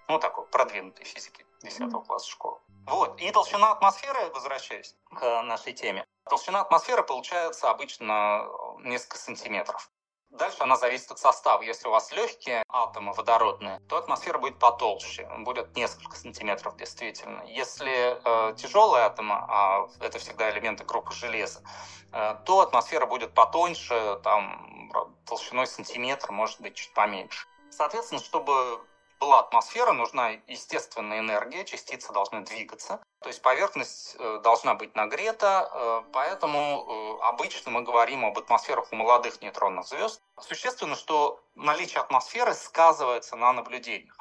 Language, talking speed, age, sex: Russian, 130 wpm, 20-39, male